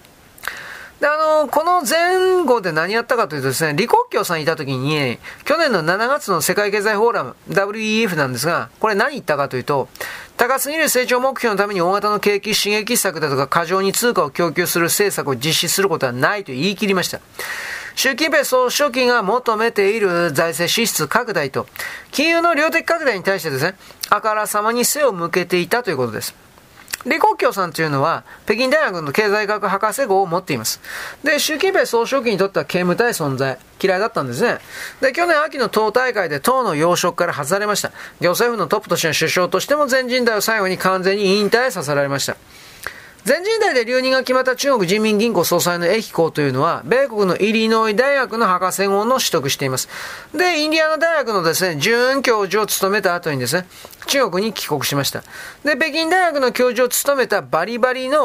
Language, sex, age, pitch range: Japanese, male, 40-59, 175-255 Hz